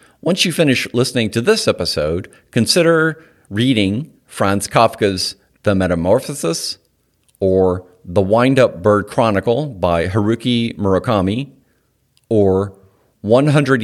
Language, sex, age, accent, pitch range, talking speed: English, male, 50-69, American, 95-130 Hz, 100 wpm